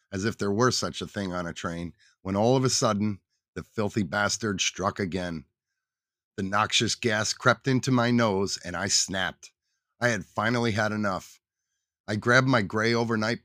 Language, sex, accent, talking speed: English, male, American, 180 wpm